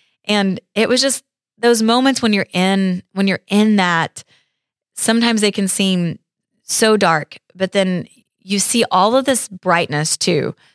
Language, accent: English, American